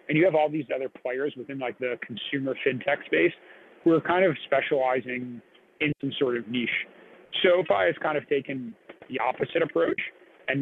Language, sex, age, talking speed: English, male, 30-49, 180 wpm